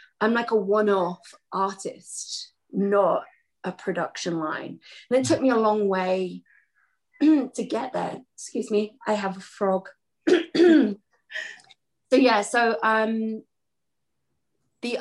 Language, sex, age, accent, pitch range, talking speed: English, female, 30-49, British, 180-235 Hz, 120 wpm